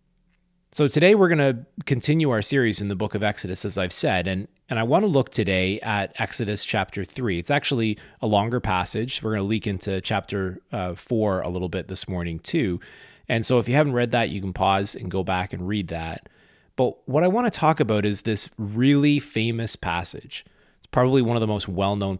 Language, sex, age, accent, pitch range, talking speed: English, male, 30-49, American, 95-125 Hz, 215 wpm